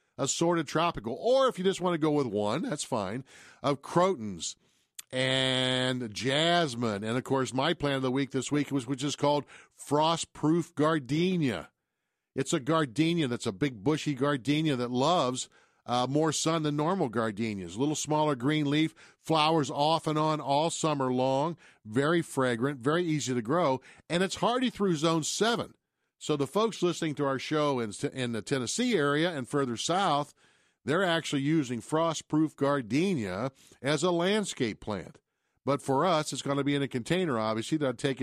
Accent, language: American, English